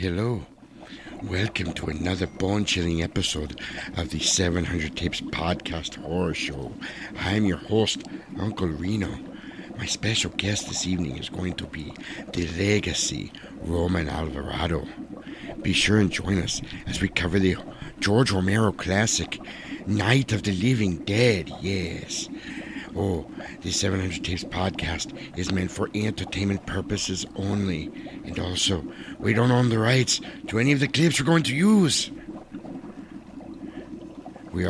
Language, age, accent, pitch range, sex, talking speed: English, 60-79, American, 90-115 Hz, male, 135 wpm